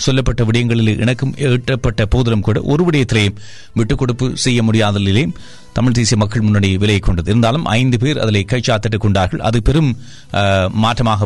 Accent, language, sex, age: native, Tamil, male, 30-49